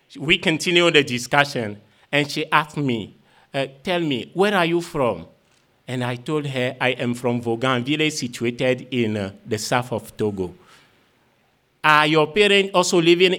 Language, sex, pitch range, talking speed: English, male, 135-180 Hz, 160 wpm